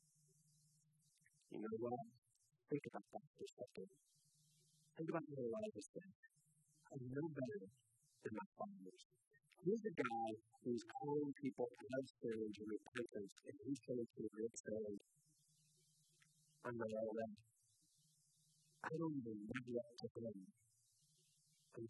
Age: 50-69